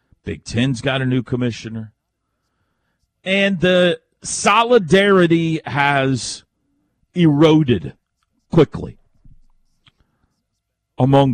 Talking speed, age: 70 wpm, 40-59